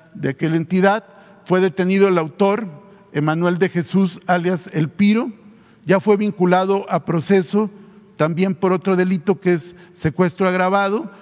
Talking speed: 140 wpm